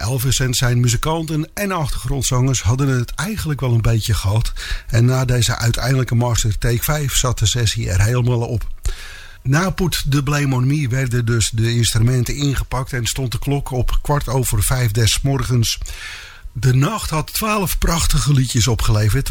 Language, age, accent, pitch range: English, 50-69, Dutch, 115-140 Hz